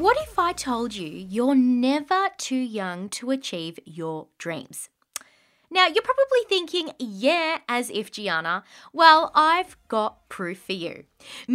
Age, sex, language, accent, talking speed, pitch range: 20-39, female, English, Australian, 140 wpm, 205-310 Hz